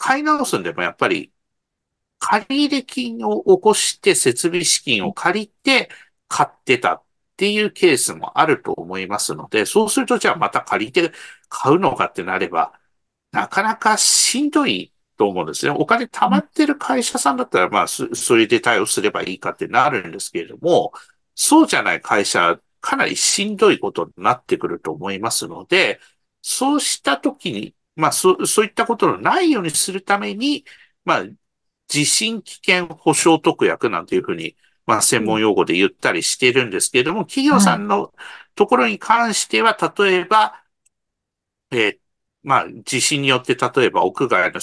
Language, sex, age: Japanese, male, 50-69